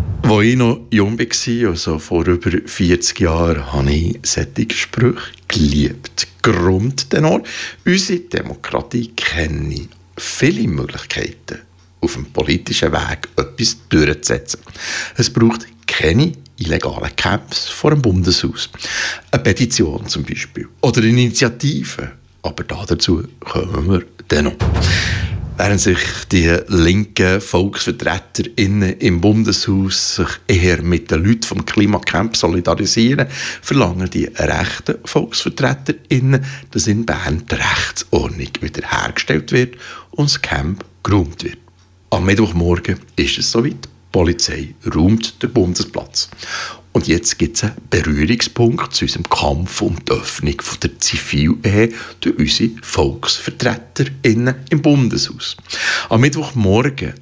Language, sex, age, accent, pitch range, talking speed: German, male, 60-79, Austrian, 90-120 Hz, 115 wpm